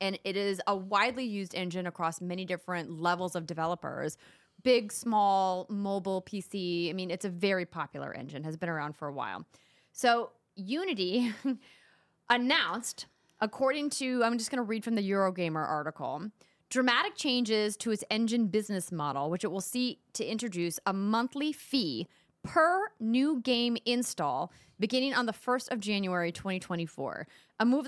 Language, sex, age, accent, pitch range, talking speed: English, female, 30-49, American, 180-245 Hz, 155 wpm